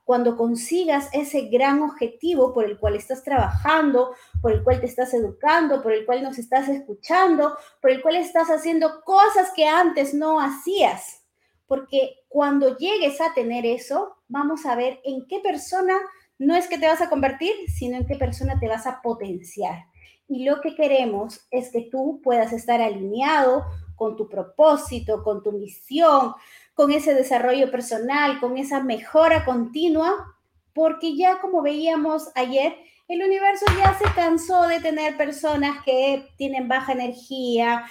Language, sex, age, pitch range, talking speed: Spanish, female, 30-49, 240-315 Hz, 160 wpm